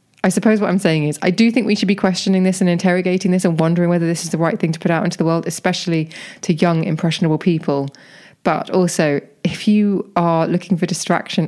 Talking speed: 230 wpm